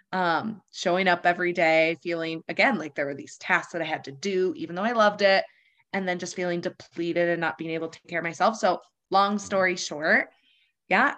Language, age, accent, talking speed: English, 20-39, American, 220 wpm